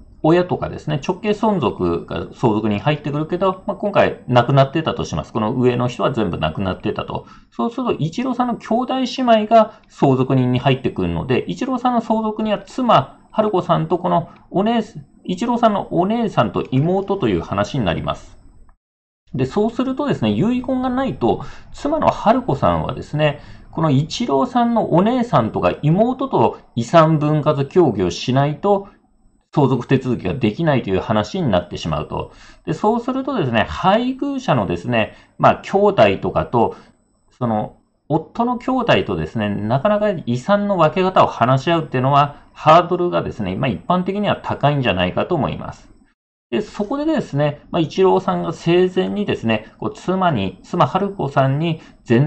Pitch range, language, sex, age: 125-205 Hz, Japanese, male, 40-59